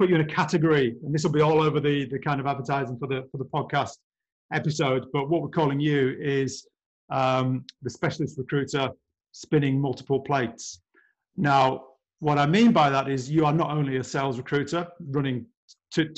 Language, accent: English, British